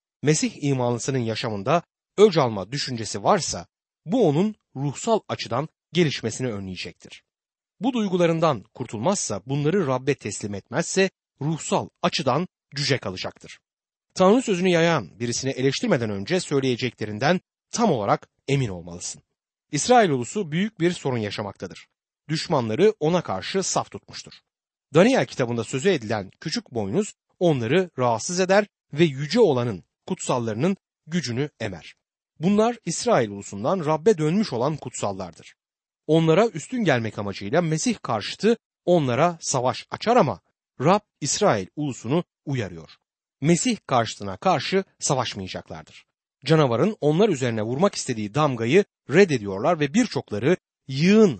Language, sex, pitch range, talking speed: Turkish, male, 115-185 Hz, 110 wpm